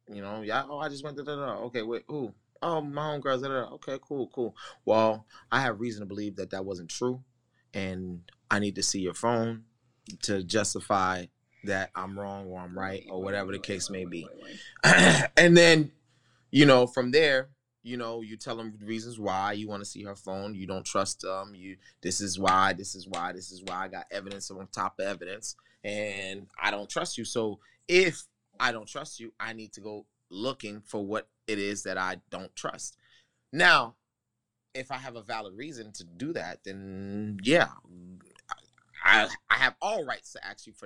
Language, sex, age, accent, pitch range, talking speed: English, male, 20-39, American, 100-125 Hz, 195 wpm